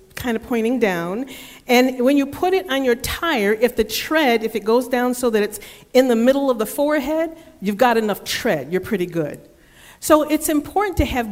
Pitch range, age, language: 200-270 Hz, 50-69, English